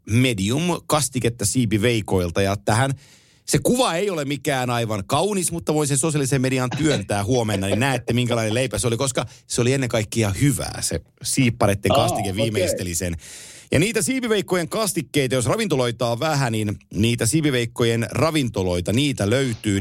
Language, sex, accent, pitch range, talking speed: Finnish, male, native, 110-145 Hz, 150 wpm